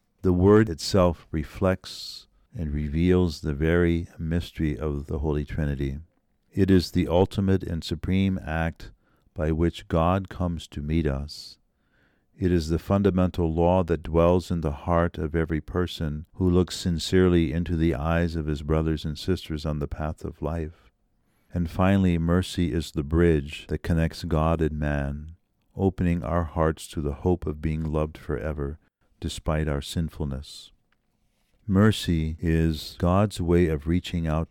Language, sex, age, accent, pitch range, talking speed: English, male, 50-69, American, 75-90 Hz, 150 wpm